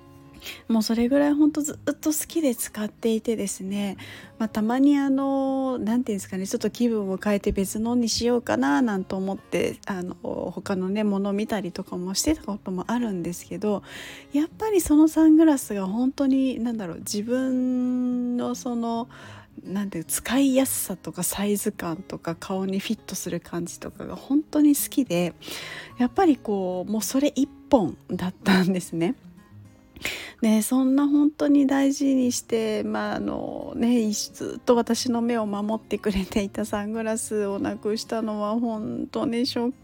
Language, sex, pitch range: Japanese, female, 195-260 Hz